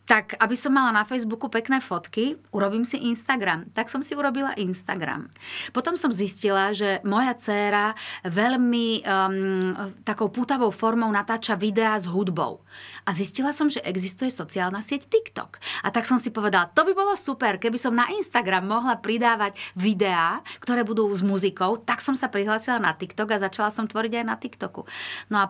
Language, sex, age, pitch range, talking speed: Slovak, female, 30-49, 185-225 Hz, 175 wpm